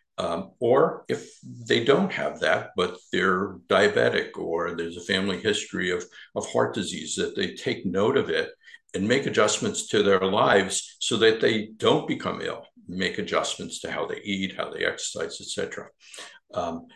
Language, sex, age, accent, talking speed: English, male, 60-79, American, 175 wpm